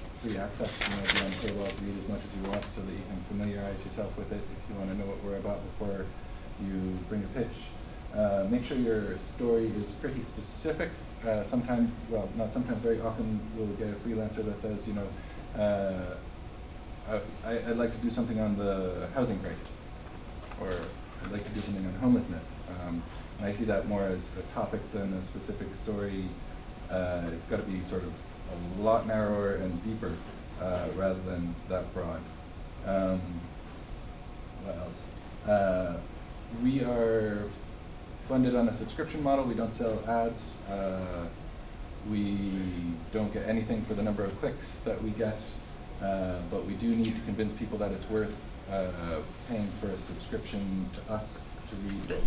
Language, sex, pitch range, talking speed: English, male, 90-110 Hz, 180 wpm